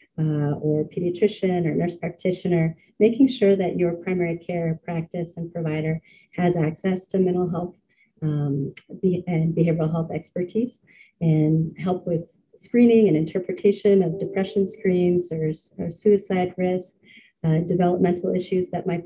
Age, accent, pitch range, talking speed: 30-49, American, 165-190 Hz, 140 wpm